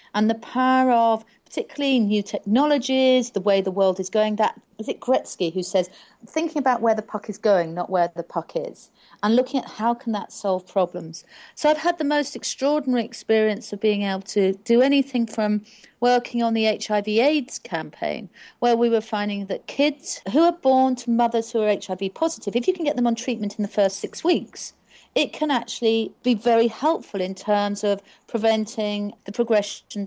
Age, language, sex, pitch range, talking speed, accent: 40-59, English, female, 200-255 Hz, 195 wpm, British